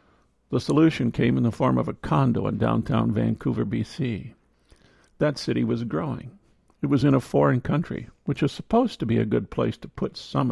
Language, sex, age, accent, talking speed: English, male, 50-69, American, 195 wpm